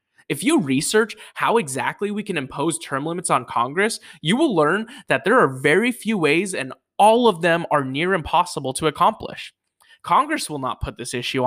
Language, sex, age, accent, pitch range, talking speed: English, male, 20-39, American, 145-200 Hz, 190 wpm